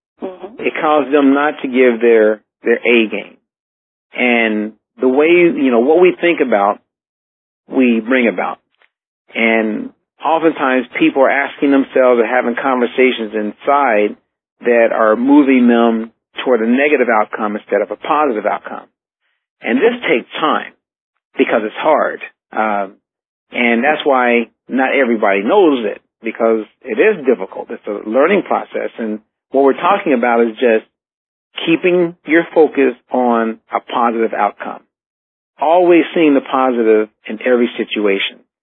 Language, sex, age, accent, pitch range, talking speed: English, male, 50-69, American, 115-150 Hz, 135 wpm